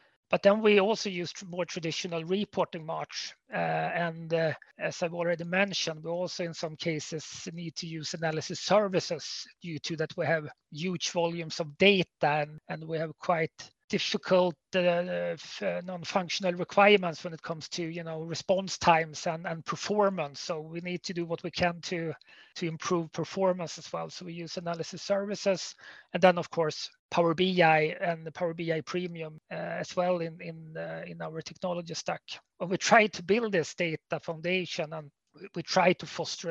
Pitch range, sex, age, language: 165-185 Hz, male, 30-49, Finnish